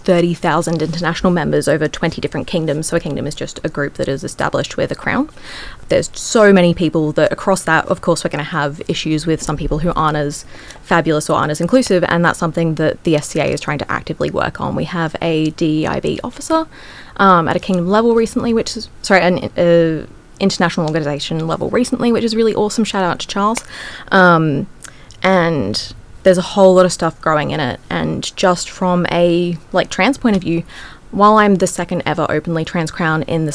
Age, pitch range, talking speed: 20-39, 160-195 Hz, 205 wpm